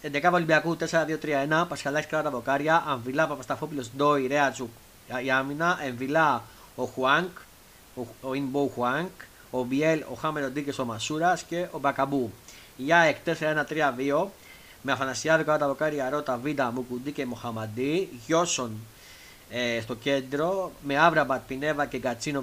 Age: 30-49